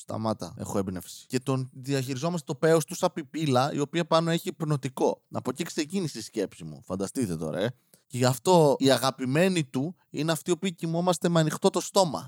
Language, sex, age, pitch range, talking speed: Greek, male, 20-39, 120-170 Hz, 185 wpm